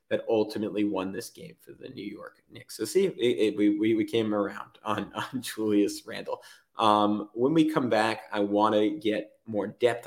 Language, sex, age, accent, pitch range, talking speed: English, male, 20-39, American, 105-125 Hz, 195 wpm